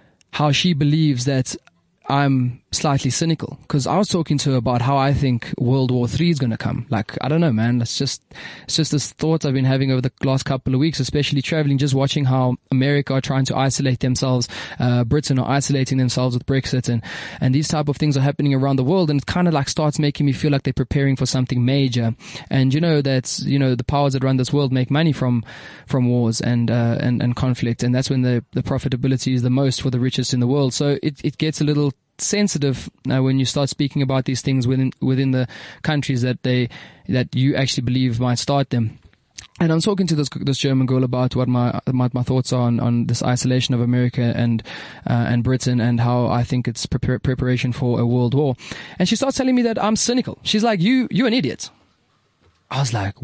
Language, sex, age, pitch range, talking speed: English, male, 20-39, 125-145 Hz, 230 wpm